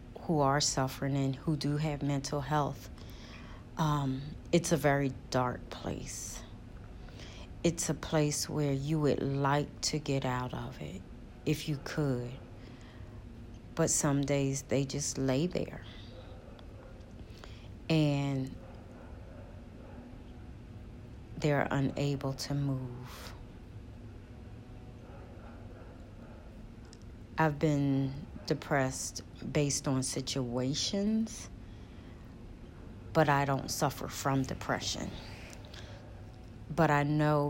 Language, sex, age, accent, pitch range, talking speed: English, female, 30-49, American, 115-140 Hz, 90 wpm